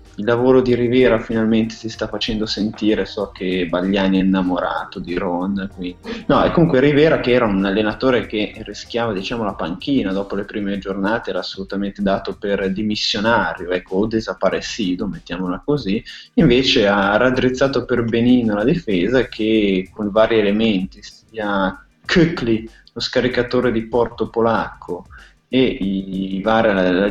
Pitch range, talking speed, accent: 100-120 Hz, 150 wpm, native